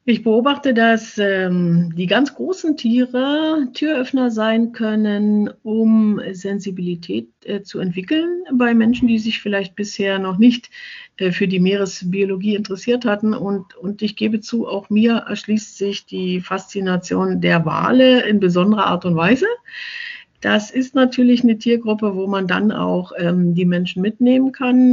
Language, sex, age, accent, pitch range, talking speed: German, female, 50-69, German, 190-245 Hz, 150 wpm